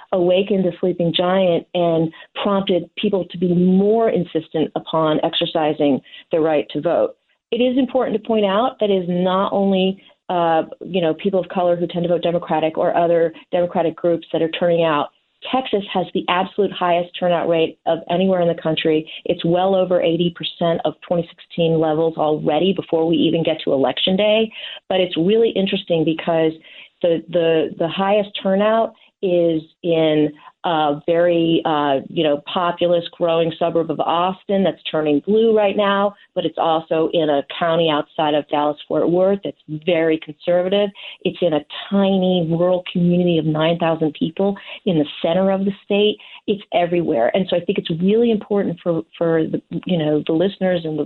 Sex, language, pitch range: female, English, 160-190 Hz